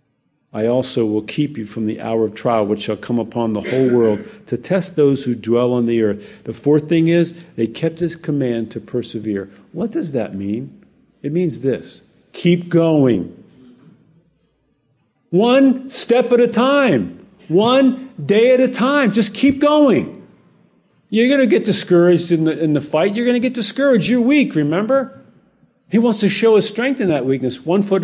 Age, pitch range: 50-69, 120-180 Hz